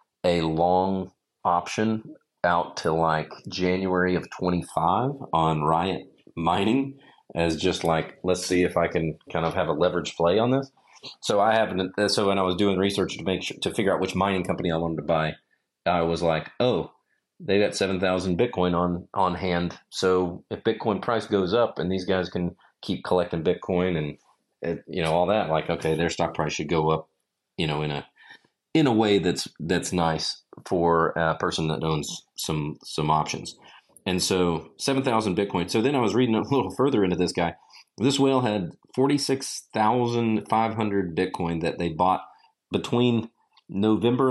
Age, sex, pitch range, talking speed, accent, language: 30-49, male, 85-105 Hz, 175 wpm, American, English